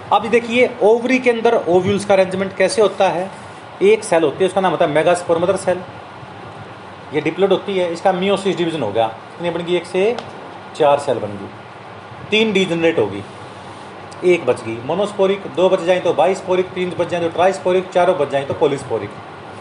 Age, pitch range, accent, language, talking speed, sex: 30-49, 140-195 Hz, native, Hindi, 190 wpm, male